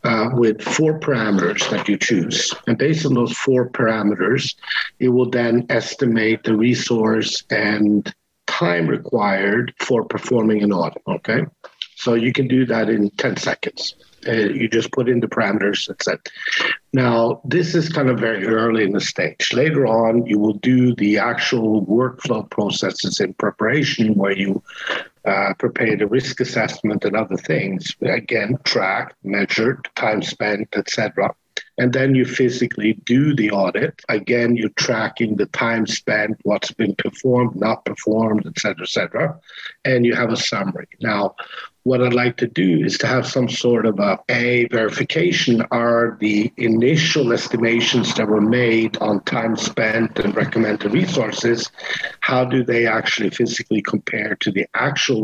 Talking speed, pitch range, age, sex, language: 155 wpm, 110-125 Hz, 50-69, male, English